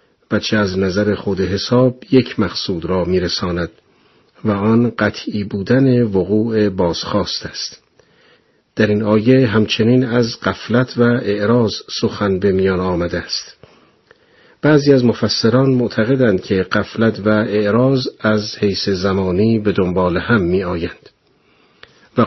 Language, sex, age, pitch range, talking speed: Persian, male, 50-69, 95-120 Hz, 125 wpm